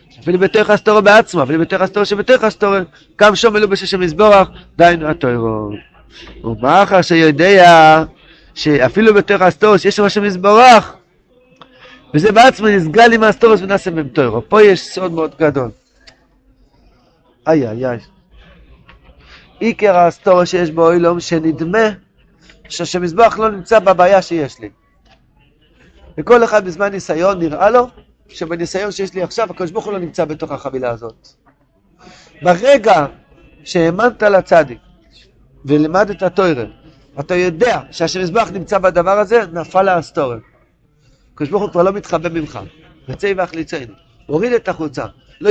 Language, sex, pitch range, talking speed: Hebrew, male, 160-205 Hz, 125 wpm